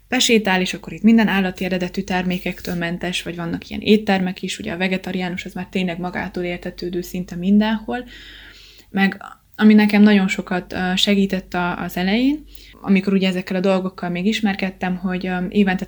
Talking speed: 155 wpm